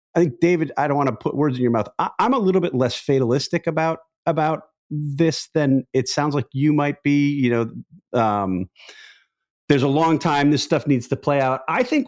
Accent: American